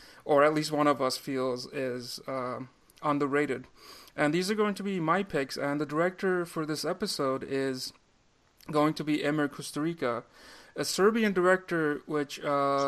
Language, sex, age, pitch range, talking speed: English, male, 30-49, 130-155 Hz, 165 wpm